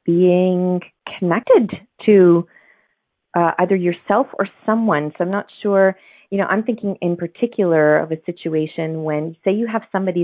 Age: 30-49